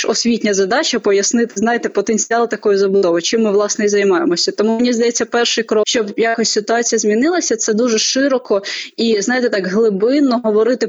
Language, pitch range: Ukrainian, 210-245 Hz